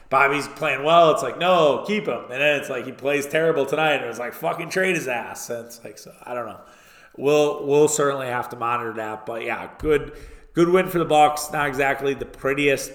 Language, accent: English, American